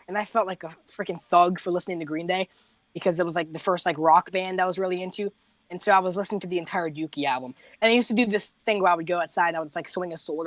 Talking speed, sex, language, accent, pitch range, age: 310 wpm, female, English, American, 160-215 Hz, 20-39